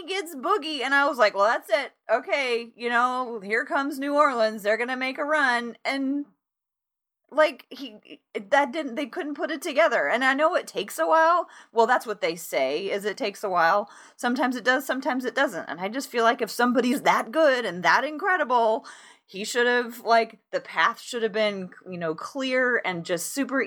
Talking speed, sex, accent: 205 wpm, female, American